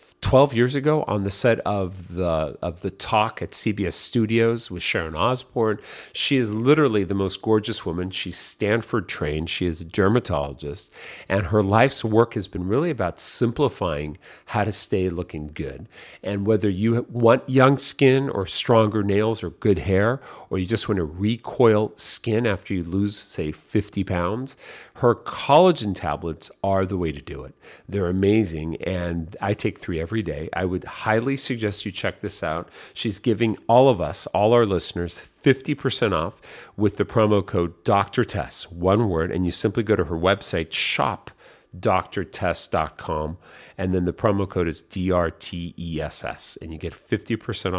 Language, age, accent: English, 40-59, American